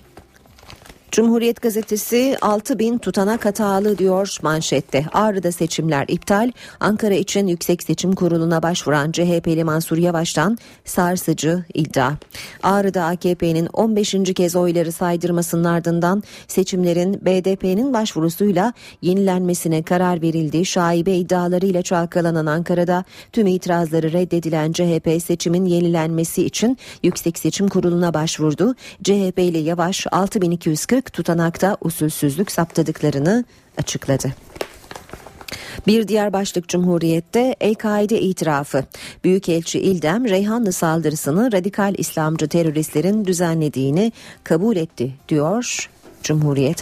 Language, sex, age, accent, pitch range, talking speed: Turkish, female, 40-59, native, 160-195 Hz, 95 wpm